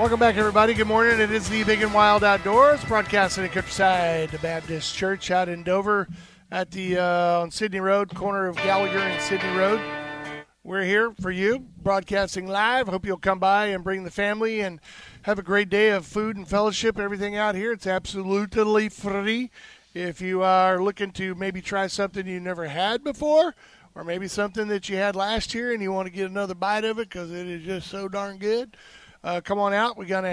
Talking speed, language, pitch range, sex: 205 wpm, English, 185-215 Hz, male